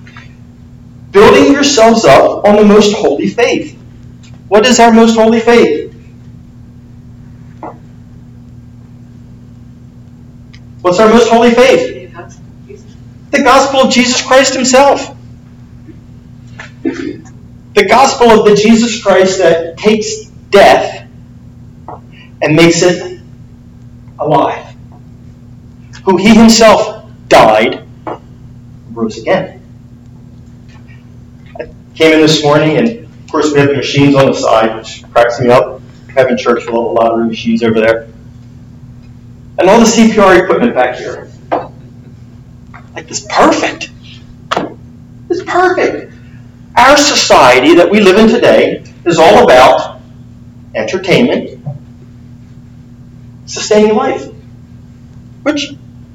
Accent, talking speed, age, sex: American, 105 wpm, 40-59, male